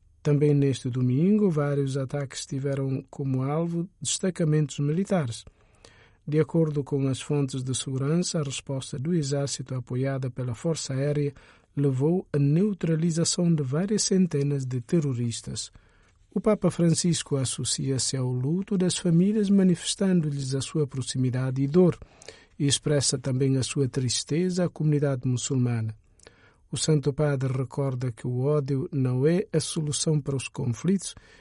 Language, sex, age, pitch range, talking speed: Portuguese, male, 50-69, 135-170 Hz, 135 wpm